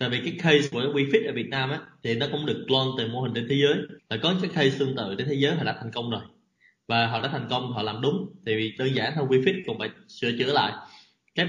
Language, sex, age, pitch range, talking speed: Vietnamese, male, 20-39, 115-150 Hz, 280 wpm